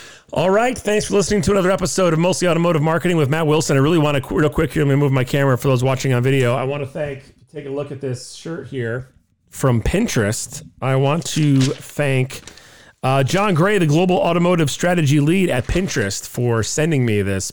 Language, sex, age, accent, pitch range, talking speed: English, male, 40-59, American, 110-155 Hz, 210 wpm